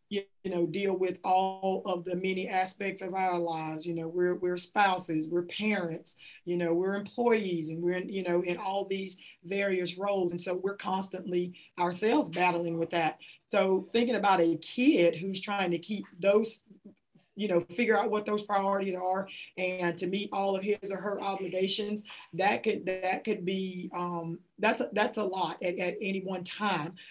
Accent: American